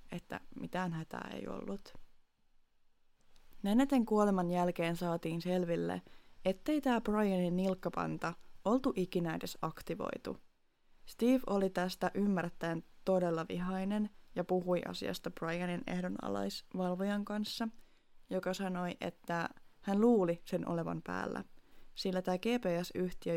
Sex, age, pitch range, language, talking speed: female, 20-39, 170-205 Hz, Finnish, 105 wpm